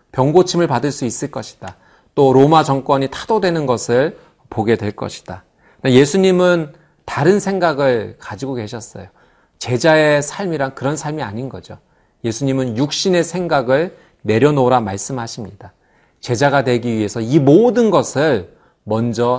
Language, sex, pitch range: Korean, male, 110-160 Hz